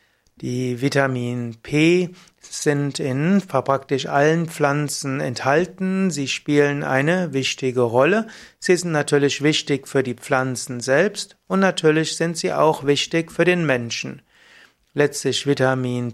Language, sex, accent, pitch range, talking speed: German, male, German, 135-165 Hz, 125 wpm